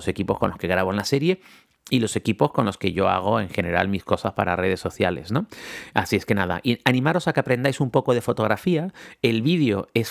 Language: Spanish